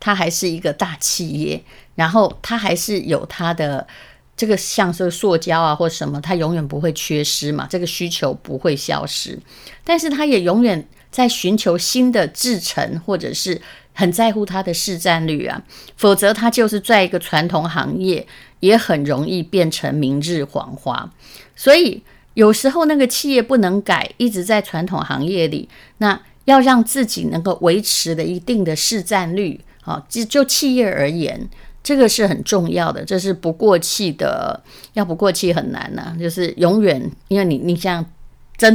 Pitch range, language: 165-215 Hz, Chinese